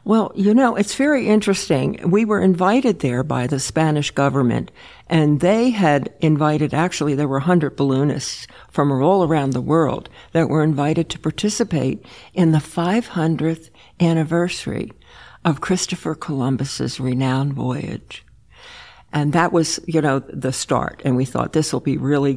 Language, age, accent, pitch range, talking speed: English, 60-79, American, 140-180 Hz, 150 wpm